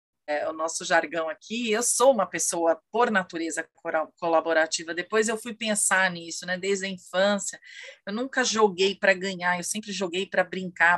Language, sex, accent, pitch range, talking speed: Portuguese, female, Brazilian, 170-205 Hz, 175 wpm